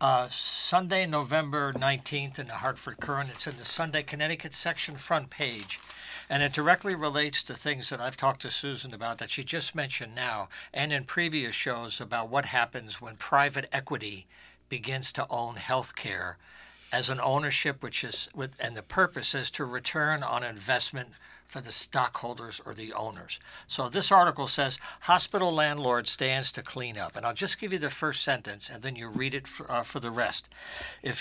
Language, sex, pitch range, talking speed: English, male, 125-155 Hz, 190 wpm